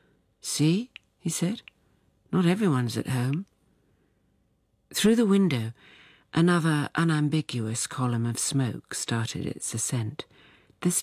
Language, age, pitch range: English, 50-69, 115-155 Hz